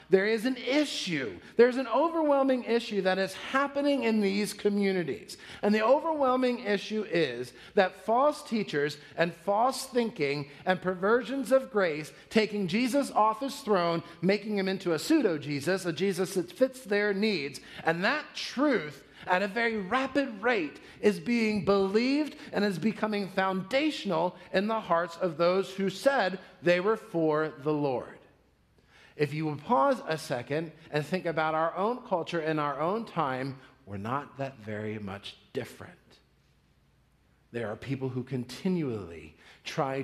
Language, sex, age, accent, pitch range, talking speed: English, male, 40-59, American, 155-220 Hz, 150 wpm